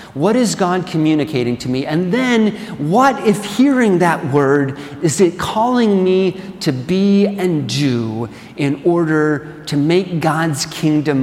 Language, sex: English, male